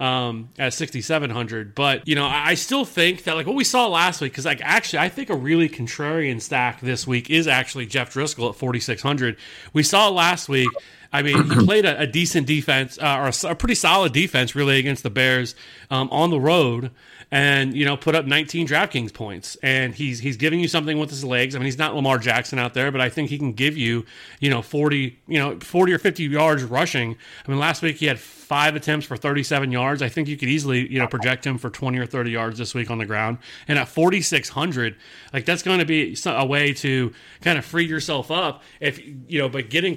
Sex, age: male, 30-49